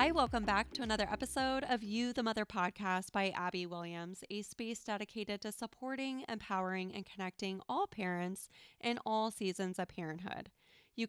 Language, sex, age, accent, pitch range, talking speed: English, female, 20-39, American, 180-215 Hz, 160 wpm